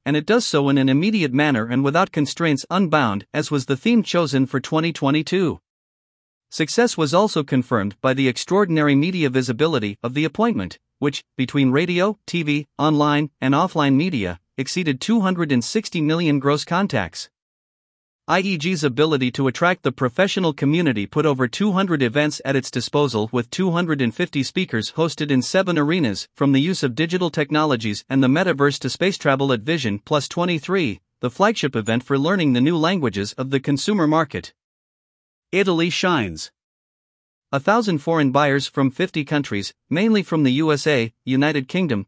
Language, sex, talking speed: English, male, 155 wpm